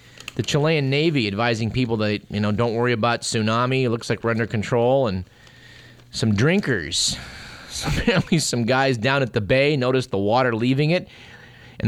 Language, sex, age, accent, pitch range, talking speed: English, male, 30-49, American, 110-135 Hz, 170 wpm